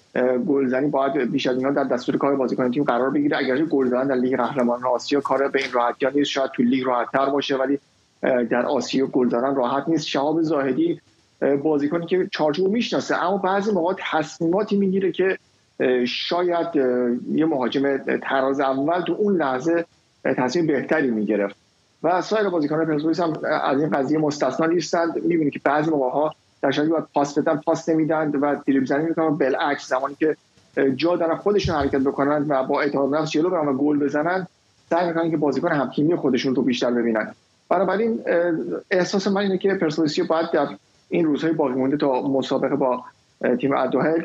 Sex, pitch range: male, 130-160 Hz